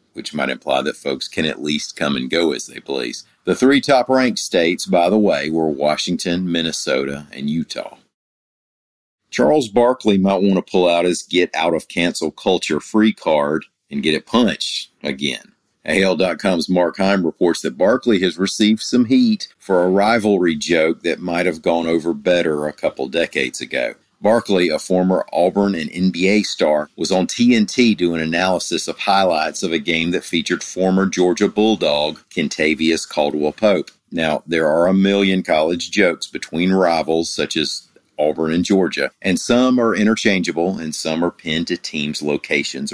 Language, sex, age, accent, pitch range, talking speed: English, male, 50-69, American, 80-100 Hz, 160 wpm